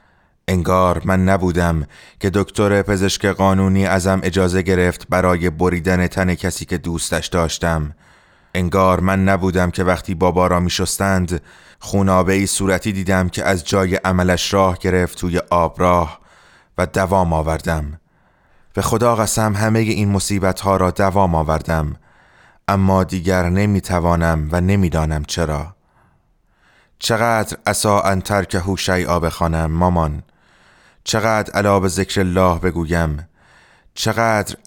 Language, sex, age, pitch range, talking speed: English, male, 30-49, 85-100 Hz, 120 wpm